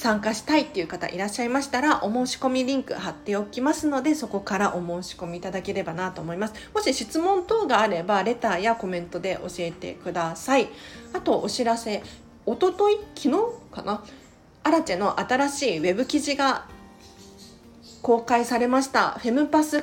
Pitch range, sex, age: 180-265 Hz, female, 40-59